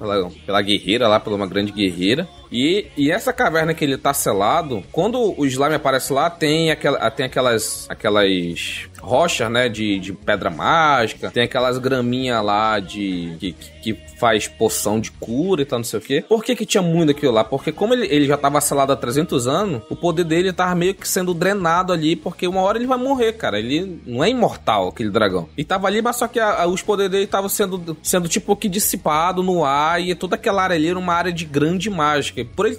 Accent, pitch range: Brazilian, 130-185 Hz